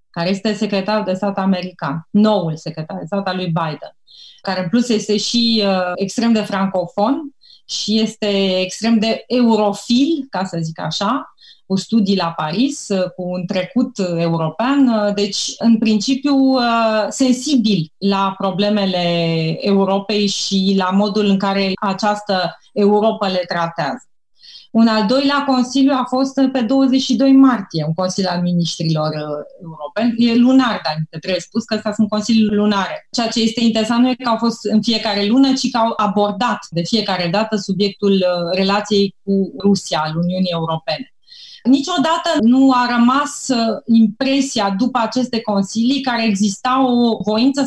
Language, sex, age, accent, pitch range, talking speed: Romanian, female, 30-49, native, 190-245 Hz, 150 wpm